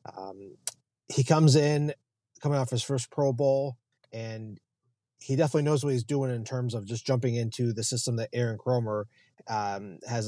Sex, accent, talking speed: male, American, 175 wpm